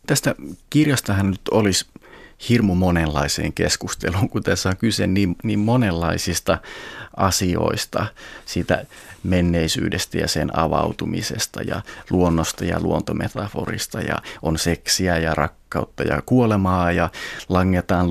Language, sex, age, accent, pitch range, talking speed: Finnish, male, 30-49, native, 85-105 Hz, 110 wpm